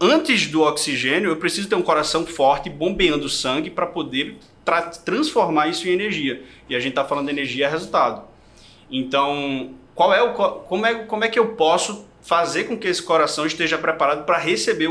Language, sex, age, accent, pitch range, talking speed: Portuguese, male, 20-39, Brazilian, 135-170 Hz, 195 wpm